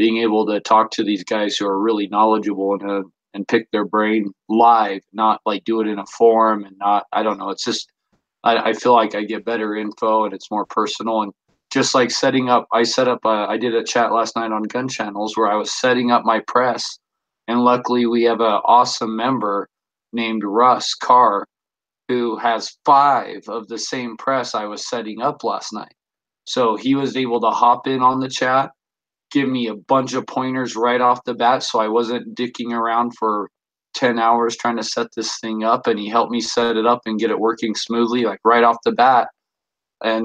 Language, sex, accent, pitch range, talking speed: English, male, American, 105-120 Hz, 215 wpm